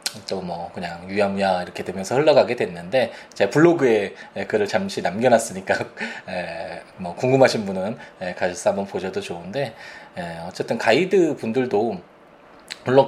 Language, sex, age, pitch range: Korean, male, 20-39, 105-170 Hz